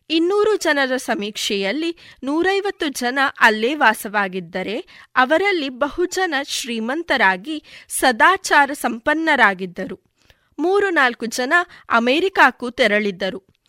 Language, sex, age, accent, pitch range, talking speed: Kannada, female, 20-39, native, 230-335 Hz, 75 wpm